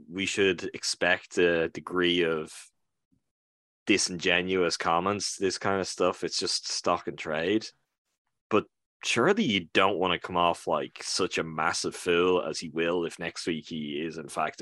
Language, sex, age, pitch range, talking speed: English, male, 10-29, 85-105 Hz, 165 wpm